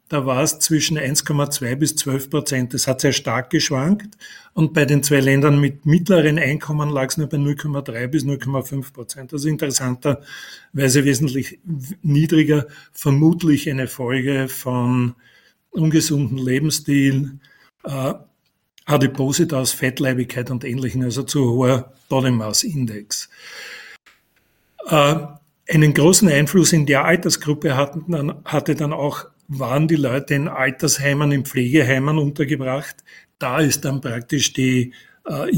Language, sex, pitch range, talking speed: German, male, 130-155 Hz, 125 wpm